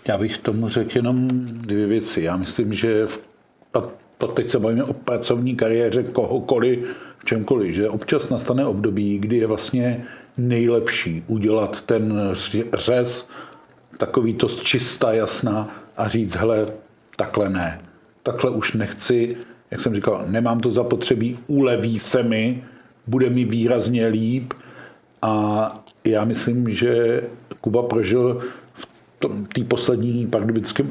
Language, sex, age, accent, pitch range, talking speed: Czech, male, 50-69, native, 110-125 Hz, 130 wpm